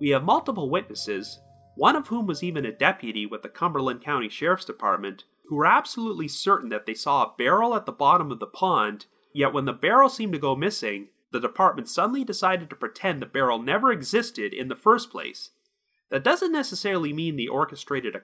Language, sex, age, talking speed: English, male, 30-49, 200 wpm